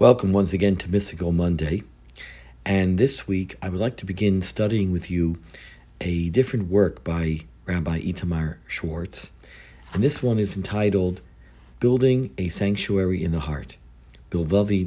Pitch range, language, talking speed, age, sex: 70-110 Hz, English, 145 wpm, 50-69, male